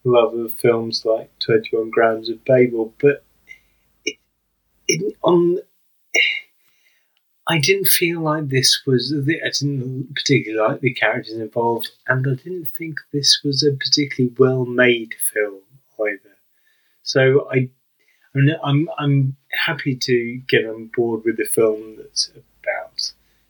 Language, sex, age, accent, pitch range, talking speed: English, male, 30-49, British, 115-150 Hz, 135 wpm